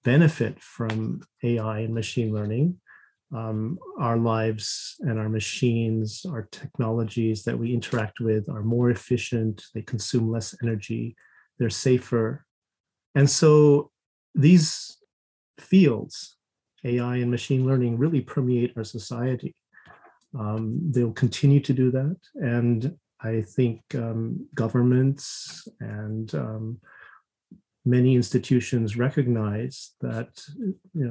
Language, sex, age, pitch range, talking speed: English, male, 40-59, 110-135 Hz, 110 wpm